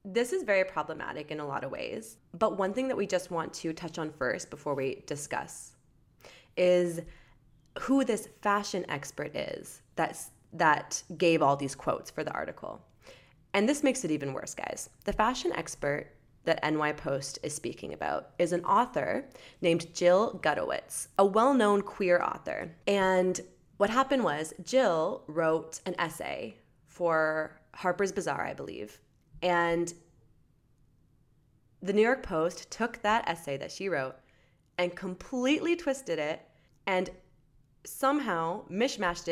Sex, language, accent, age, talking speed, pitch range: female, English, American, 20-39, 145 wpm, 150-200 Hz